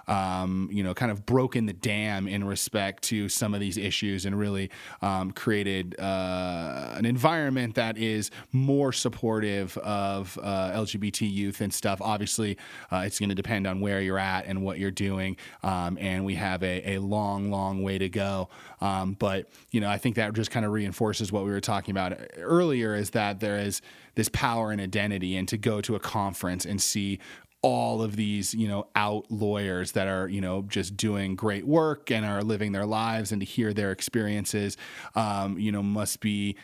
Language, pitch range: English, 95-110 Hz